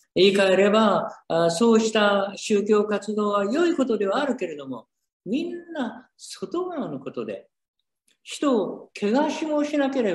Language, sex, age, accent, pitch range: Japanese, male, 50-69, native, 170-265 Hz